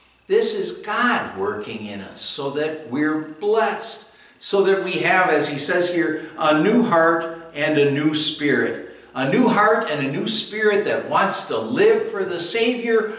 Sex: male